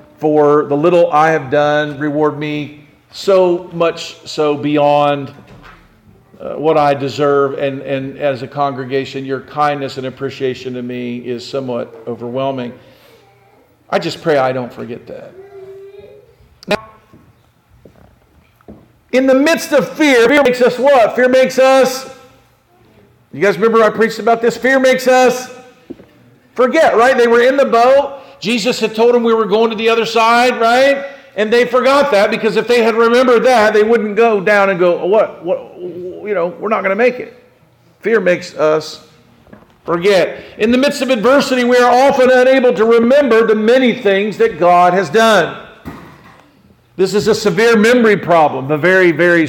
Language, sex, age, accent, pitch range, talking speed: English, male, 50-69, American, 155-250 Hz, 165 wpm